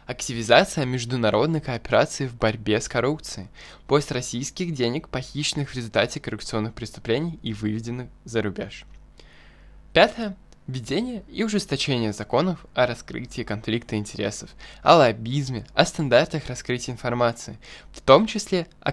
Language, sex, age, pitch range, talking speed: Russian, male, 10-29, 110-145 Hz, 115 wpm